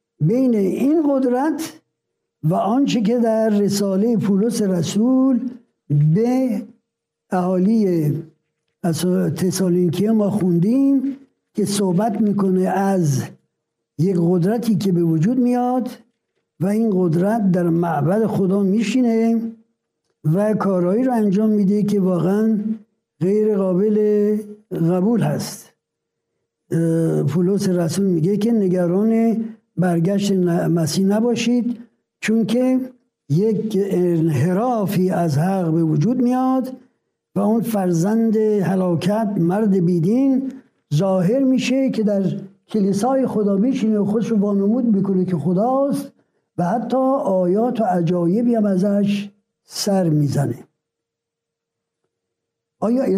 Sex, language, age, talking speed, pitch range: male, Persian, 60-79, 100 wpm, 180-230 Hz